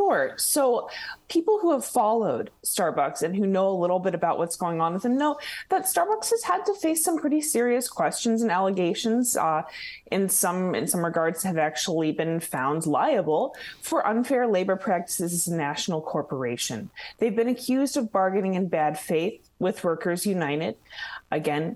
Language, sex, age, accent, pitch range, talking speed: English, female, 20-39, American, 155-225 Hz, 175 wpm